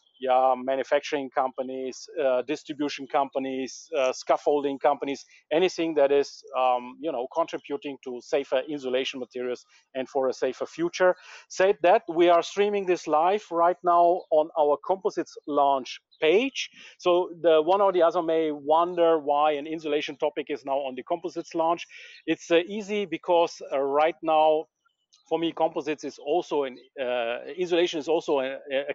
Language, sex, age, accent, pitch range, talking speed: German, male, 40-59, Austrian, 140-175 Hz, 160 wpm